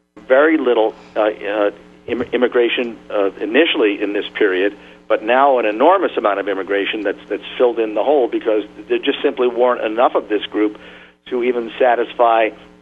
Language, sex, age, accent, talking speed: English, male, 50-69, American, 165 wpm